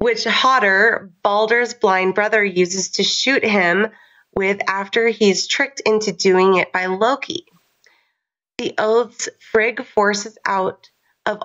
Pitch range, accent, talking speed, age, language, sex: 180-220 Hz, American, 125 wpm, 30-49, English, female